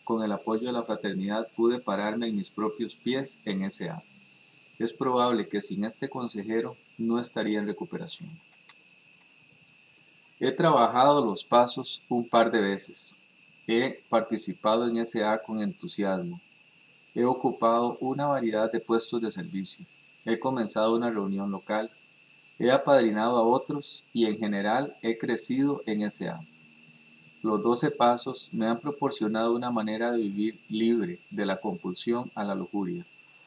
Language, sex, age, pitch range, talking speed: English, male, 30-49, 105-130 Hz, 140 wpm